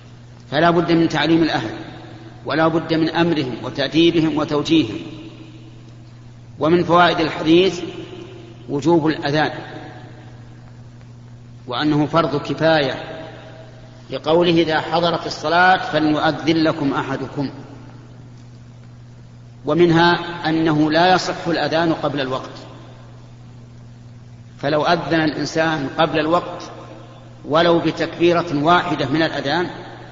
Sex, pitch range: male, 120-160 Hz